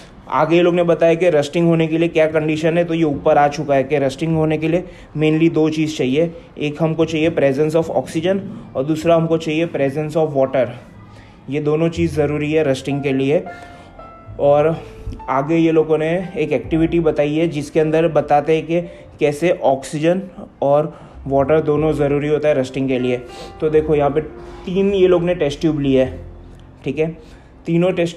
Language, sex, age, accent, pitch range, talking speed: Hindi, male, 20-39, native, 145-170 Hz, 190 wpm